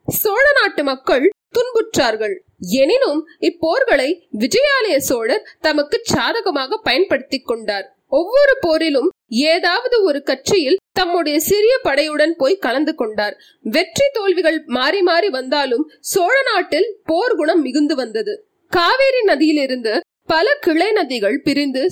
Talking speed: 110 wpm